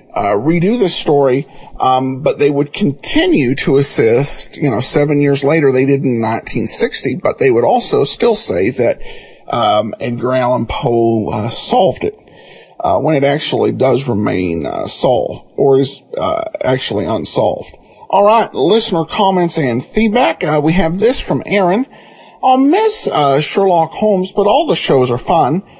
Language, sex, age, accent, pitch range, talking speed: English, male, 50-69, American, 130-205 Hz, 165 wpm